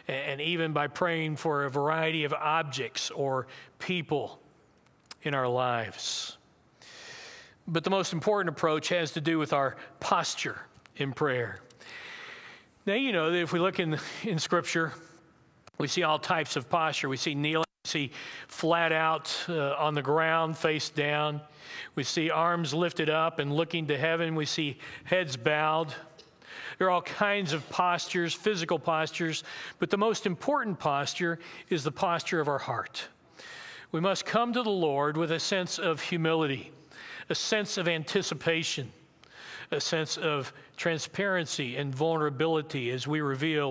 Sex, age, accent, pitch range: male, 50-69, American, 145-175 Hz